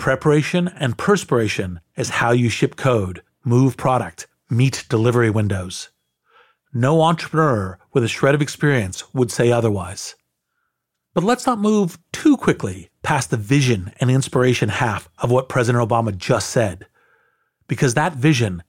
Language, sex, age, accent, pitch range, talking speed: English, male, 40-59, American, 105-135 Hz, 140 wpm